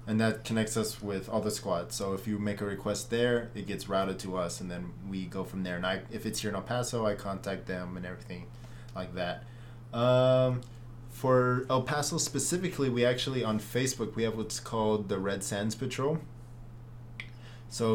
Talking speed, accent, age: 195 wpm, American, 20-39